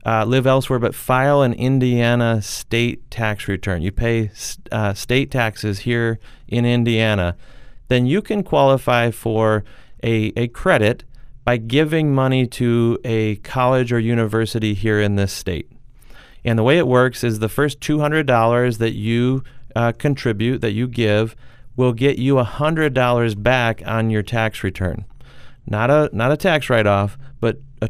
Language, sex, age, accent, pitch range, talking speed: English, male, 30-49, American, 115-135 Hz, 165 wpm